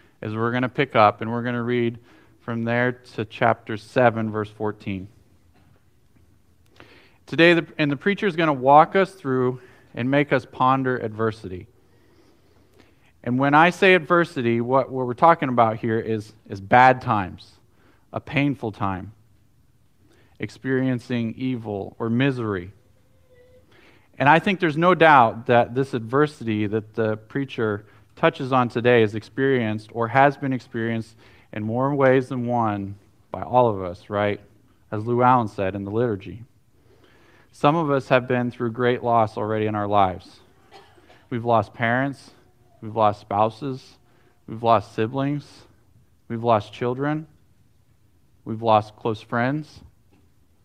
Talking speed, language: 140 wpm, English